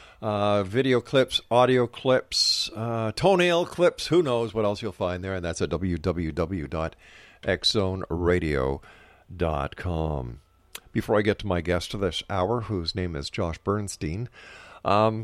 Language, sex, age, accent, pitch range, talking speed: English, male, 50-69, American, 90-120 Hz, 135 wpm